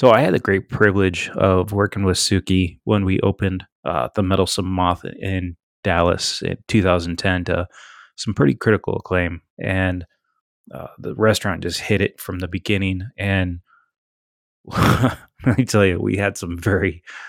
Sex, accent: male, American